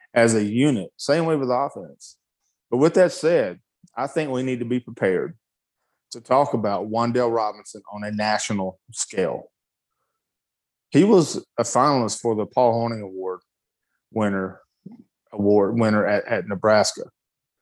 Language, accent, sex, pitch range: English, American, male, 110-130 Hz